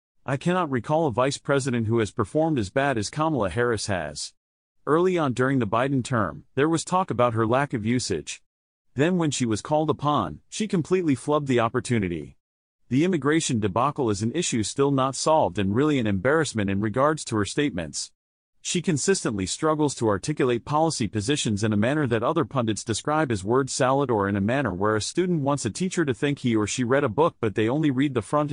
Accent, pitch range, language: American, 110-150 Hz, English